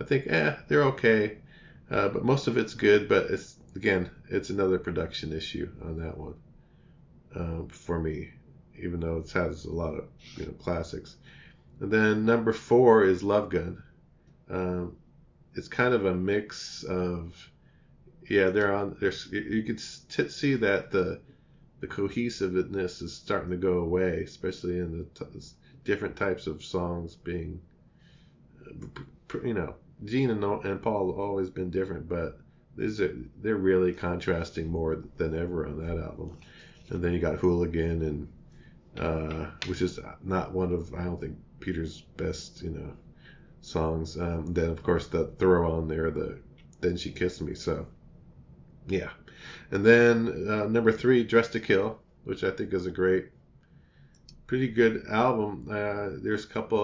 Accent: American